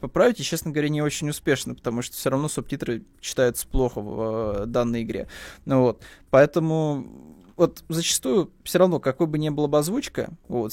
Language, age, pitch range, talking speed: Russian, 20-39, 125-160 Hz, 180 wpm